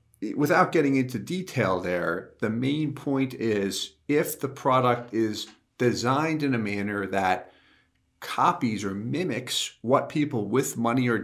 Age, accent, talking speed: 40-59, American, 140 wpm